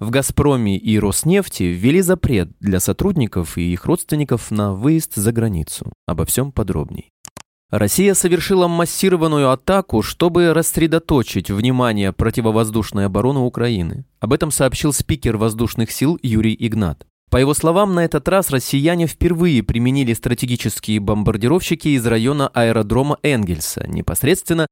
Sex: male